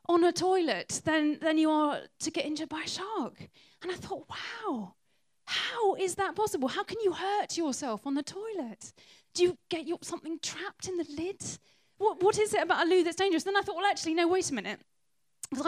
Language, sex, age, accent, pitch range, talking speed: English, female, 10-29, British, 225-315 Hz, 220 wpm